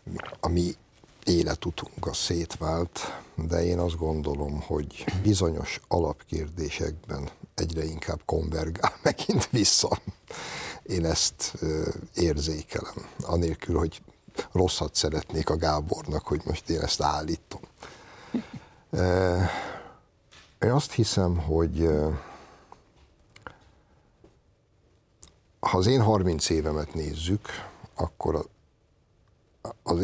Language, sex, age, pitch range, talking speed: Hungarian, male, 60-79, 80-90 Hz, 90 wpm